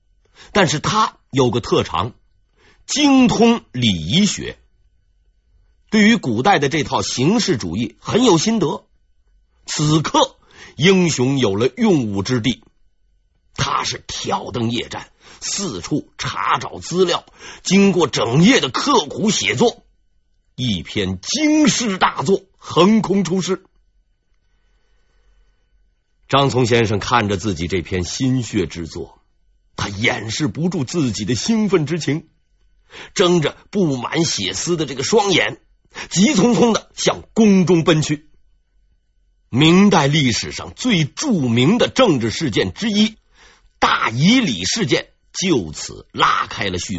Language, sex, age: Chinese, male, 50-69